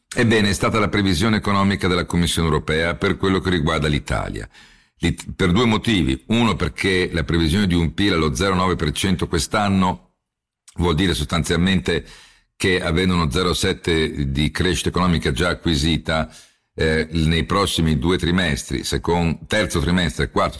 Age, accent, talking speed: 50-69, native, 145 wpm